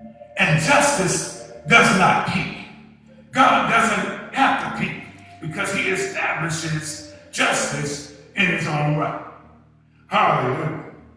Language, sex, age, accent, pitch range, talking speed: English, male, 50-69, American, 195-275 Hz, 100 wpm